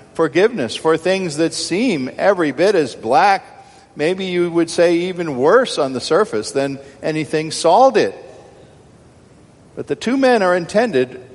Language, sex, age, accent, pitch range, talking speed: English, male, 50-69, American, 115-145 Hz, 150 wpm